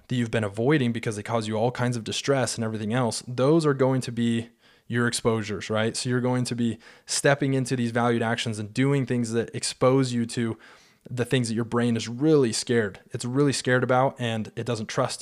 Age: 20-39